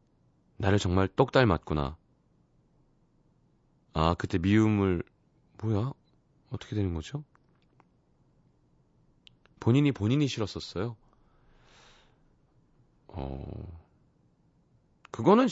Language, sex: Korean, male